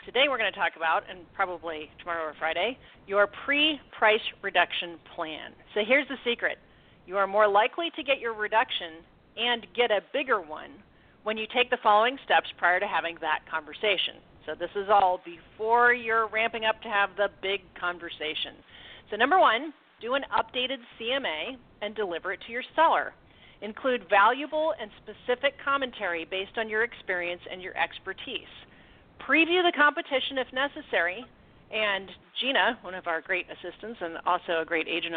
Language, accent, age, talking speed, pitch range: English, American, 40-59, 165 wpm, 185-250 Hz